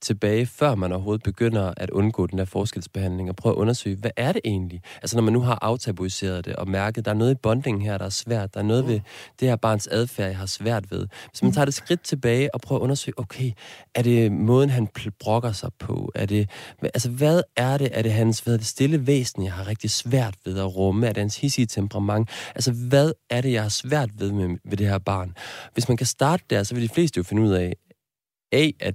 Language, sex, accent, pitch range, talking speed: Danish, male, native, 100-125 Hz, 250 wpm